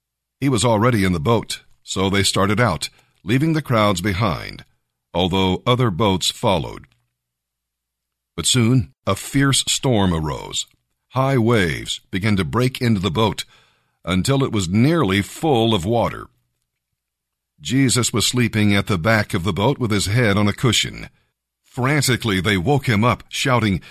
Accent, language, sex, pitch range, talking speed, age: American, English, male, 85-120 Hz, 150 wpm, 50-69